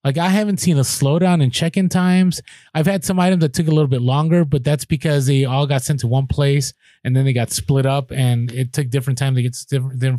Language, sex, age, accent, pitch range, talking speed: English, male, 30-49, American, 130-165 Hz, 270 wpm